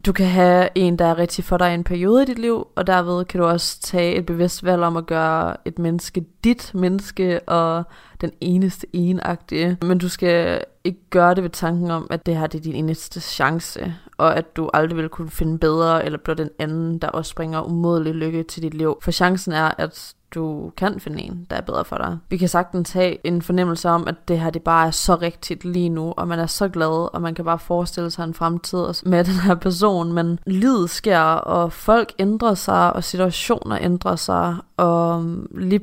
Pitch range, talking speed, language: 165-185 Hz, 220 wpm, Danish